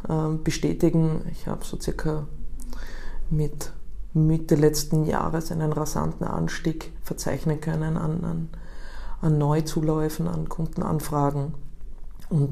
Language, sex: German, female